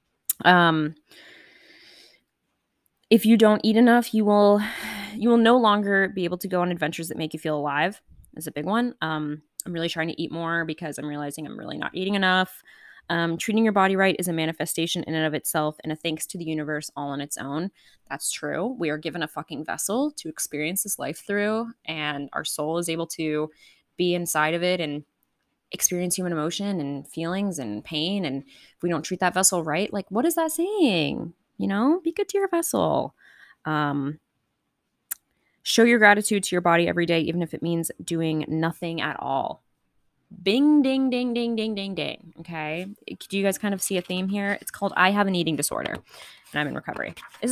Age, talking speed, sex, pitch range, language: 20-39, 205 wpm, female, 155-205 Hz, English